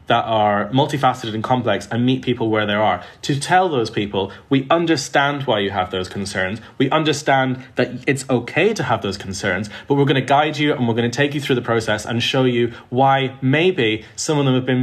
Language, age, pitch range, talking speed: English, 30-49, 115-145 Hz, 225 wpm